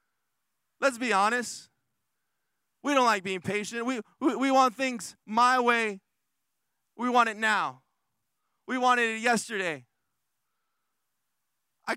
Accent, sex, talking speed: American, male, 120 wpm